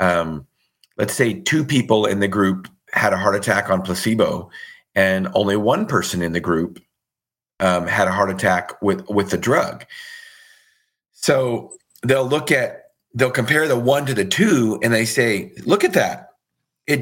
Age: 40-59